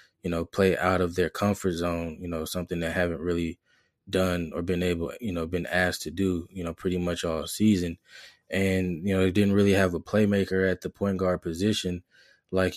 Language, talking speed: English, 210 wpm